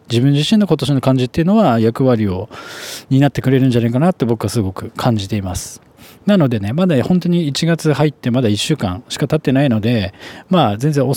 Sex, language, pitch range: male, Japanese, 115-165 Hz